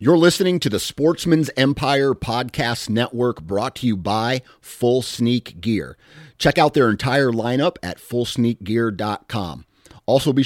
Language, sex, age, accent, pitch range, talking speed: English, male, 40-59, American, 95-130 Hz, 140 wpm